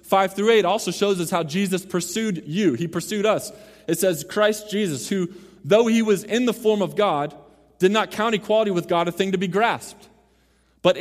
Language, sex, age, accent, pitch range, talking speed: English, male, 20-39, American, 175-215 Hz, 205 wpm